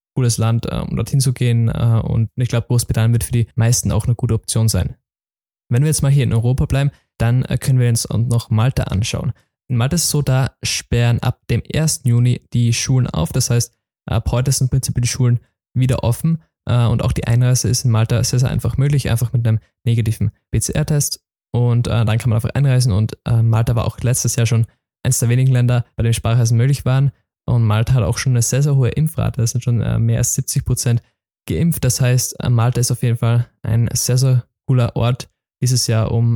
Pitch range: 115-130 Hz